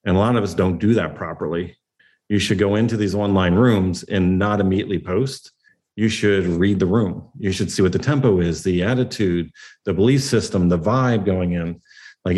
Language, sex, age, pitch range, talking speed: English, male, 40-59, 90-110 Hz, 205 wpm